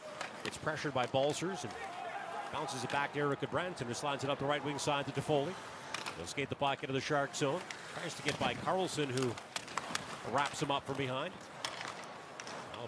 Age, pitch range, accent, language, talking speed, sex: 40-59, 125-150 Hz, American, English, 190 wpm, male